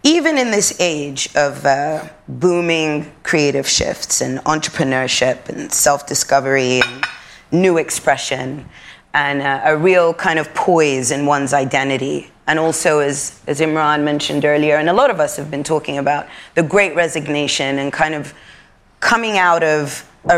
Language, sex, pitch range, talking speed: English, female, 145-175 Hz, 155 wpm